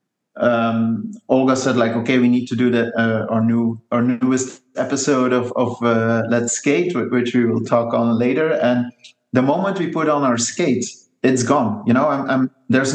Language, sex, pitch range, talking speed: English, male, 120-135 Hz, 195 wpm